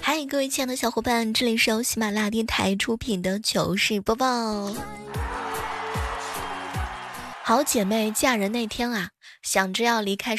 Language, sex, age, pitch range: Chinese, female, 20-39, 200-280 Hz